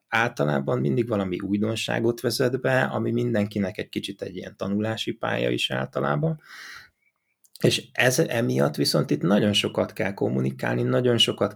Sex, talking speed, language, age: male, 140 wpm, Hungarian, 30-49